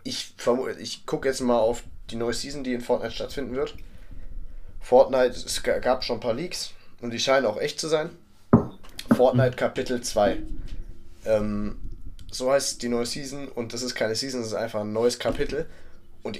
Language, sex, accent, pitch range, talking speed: German, male, German, 105-125 Hz, 185 wpm